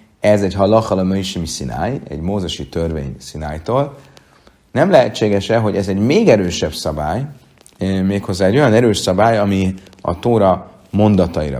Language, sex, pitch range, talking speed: Hungarian, male, 85-110 Hz, 135 wpm